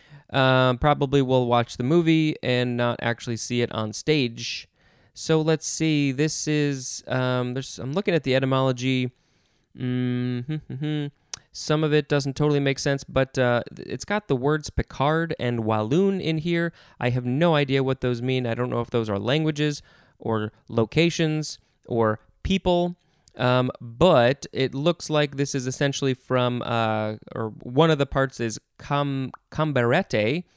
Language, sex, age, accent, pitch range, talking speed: English, male, 20-39, American, 120-155 Hz, 160 wpm